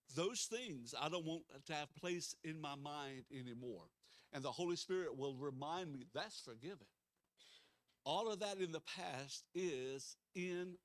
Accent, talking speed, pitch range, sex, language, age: American, 160 wpm, 145-195 Hz, male, English, 60-79